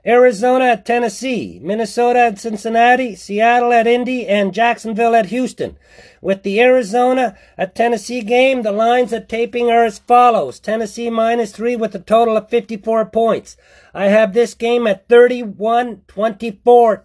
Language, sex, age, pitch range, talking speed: English, male, 50-69, 215-235 Hz, 145 wpm